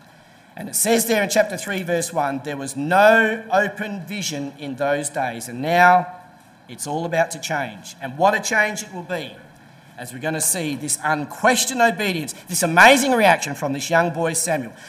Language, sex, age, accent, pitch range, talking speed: English, male, 40-59, Australian, 155-205 Hz, 190 wpm